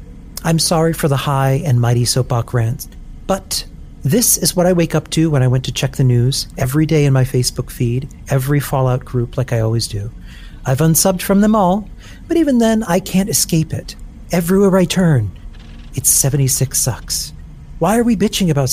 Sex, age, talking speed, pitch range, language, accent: male, 40-59, 190 wpm, 120-170 Hz, English, American